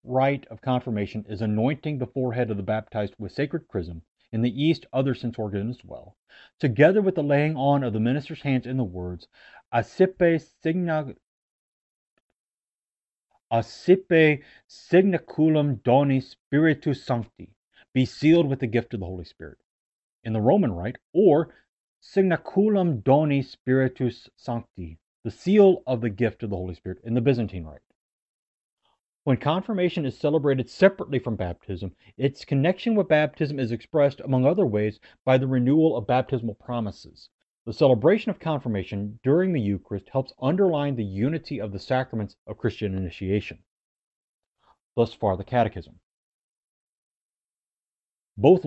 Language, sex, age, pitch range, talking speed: English, male, 30-49, 110-150 Hz, 140 wpm